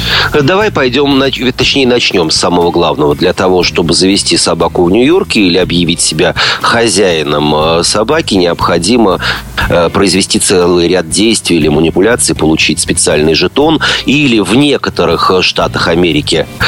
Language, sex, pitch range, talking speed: Russian, male, 80-120 Hz, 120 wpm